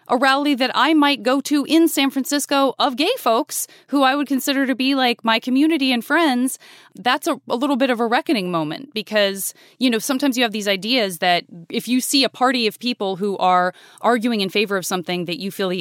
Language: English